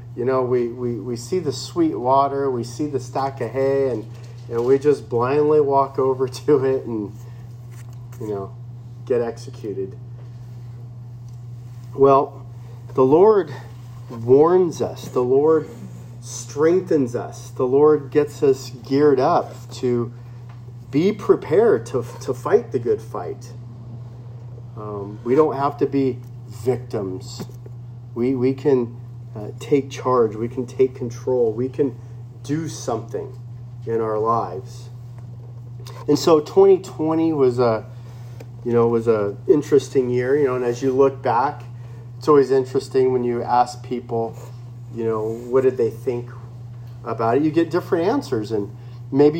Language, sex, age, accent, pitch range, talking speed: English, male, 40-59, American, 120-135 Hz, 140 wpm